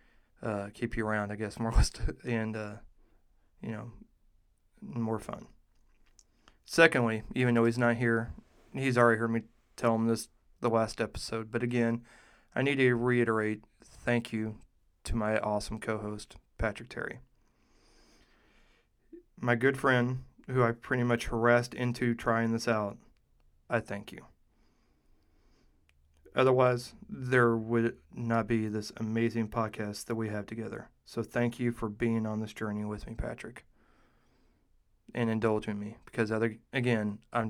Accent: American